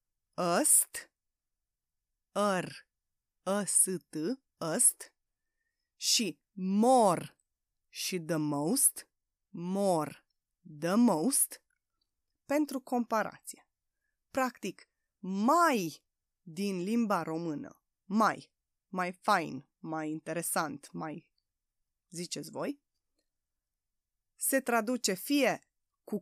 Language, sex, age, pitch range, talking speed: Romanian, female, 20-39, 165-260 Hz, 70 wpm